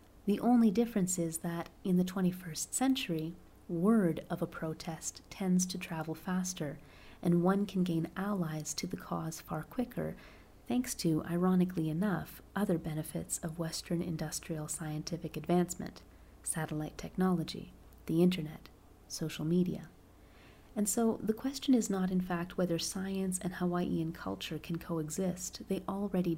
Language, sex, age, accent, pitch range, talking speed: English, female, 30-49, American, 165-195 Hz, 140 wpm